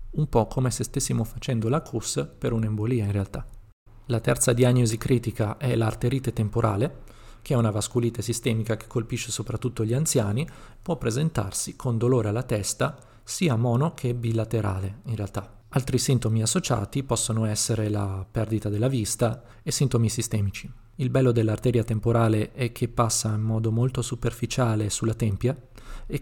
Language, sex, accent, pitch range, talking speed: Italian, male, native, 110-125 Hz, 155 wpm